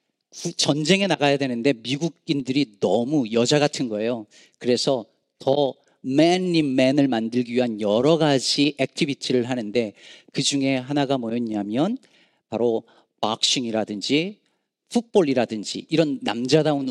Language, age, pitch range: Korean, 40-59, 125-180 Hz